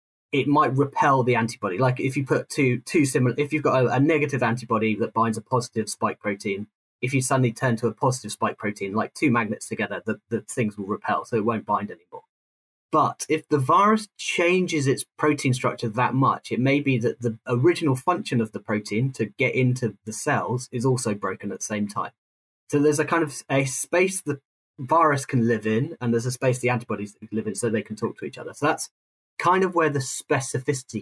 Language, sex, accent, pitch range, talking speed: English, male, British, 115-145 Hz, 220 wpm